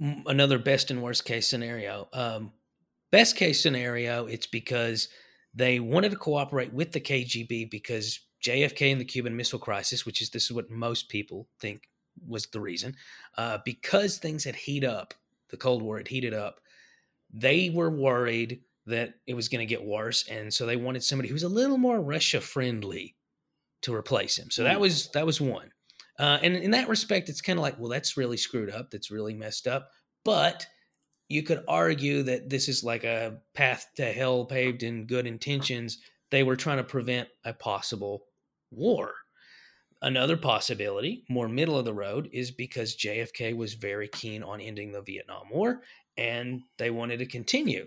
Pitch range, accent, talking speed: 115-150 Hz, American, 180 wpm